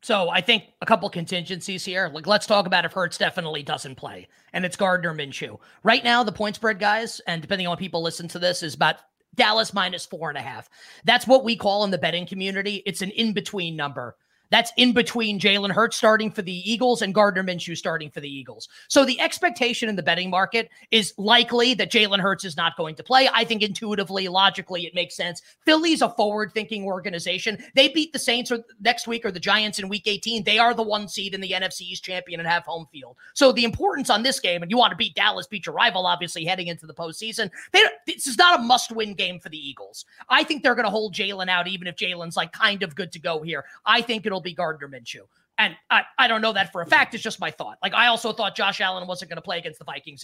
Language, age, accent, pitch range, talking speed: English, 30-49, American, 175-230 Hz, 245 wpm